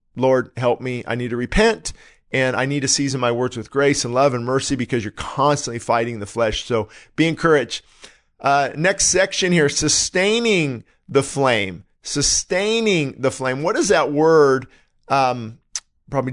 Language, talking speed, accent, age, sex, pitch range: English, 165 wpm, American, 50-69, male, 125-160 Hz